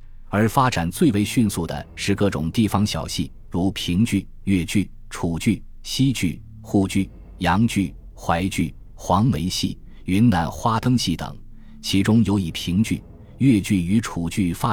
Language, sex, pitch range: Chinese, male, 85-110 Hz